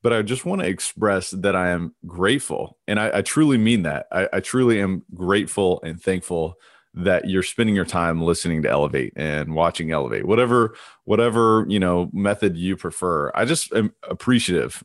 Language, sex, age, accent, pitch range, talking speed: English, male, 30-49, American, 85-105 Hz, 180 wpm